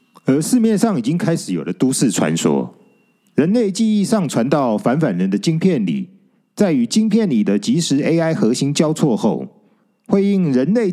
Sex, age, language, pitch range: male, 40-59, Chinese, 165-220 Hz